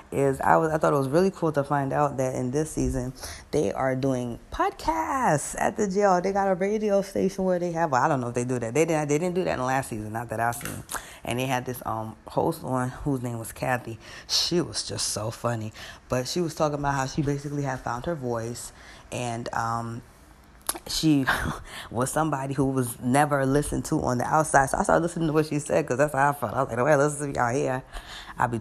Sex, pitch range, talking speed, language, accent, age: female, 120-155 Hz, 245 wpm, English, American, 20-39